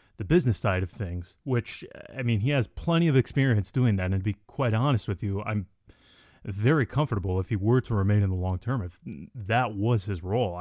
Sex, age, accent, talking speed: male, 20-39, American, 220 wpm